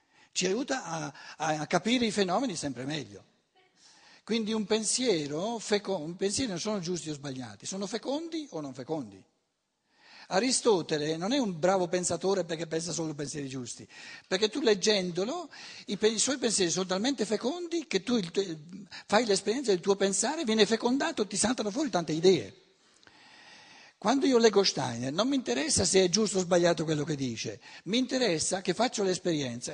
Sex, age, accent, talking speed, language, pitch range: male, 60-79, native, 155 wpm, Italian, 165-230 Hz